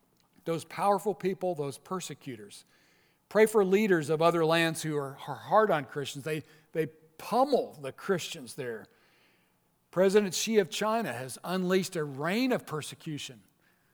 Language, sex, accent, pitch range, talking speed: English, male, American, 150-195 Hz, 140 wpm